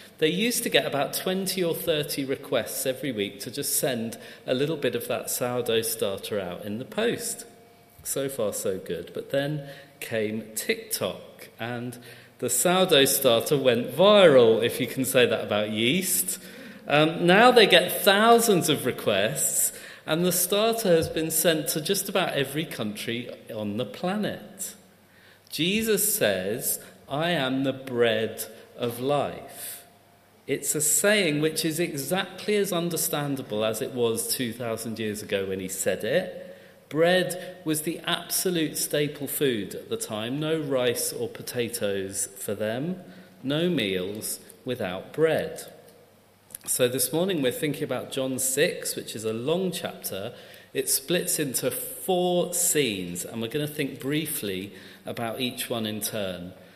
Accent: British